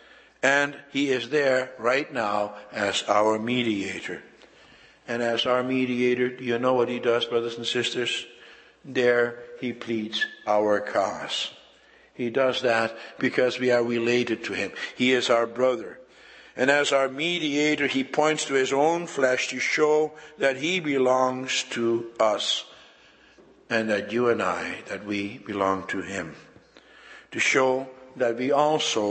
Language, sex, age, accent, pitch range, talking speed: English, male, 60-79, American, 105-130 Hz, 150 wpm